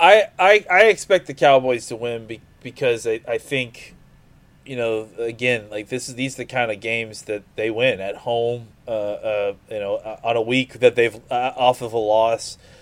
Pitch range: 120-150 Hz